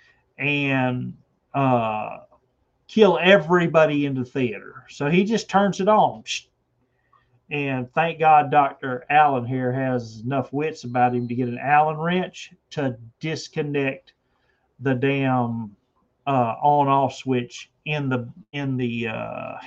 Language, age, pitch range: English, 40-59, 125-145 Hz